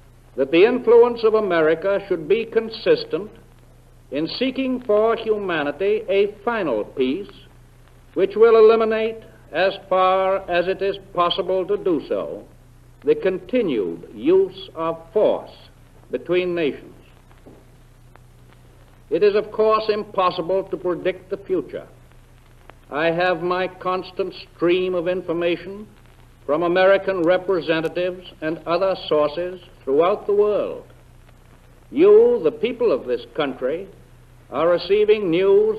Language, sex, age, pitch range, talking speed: English, male, 60-79, 170-220 Hz, 115 wpm